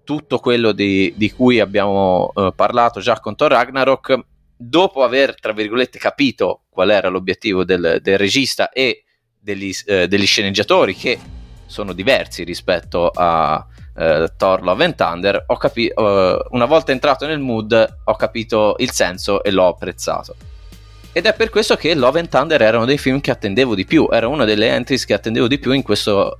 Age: 20-39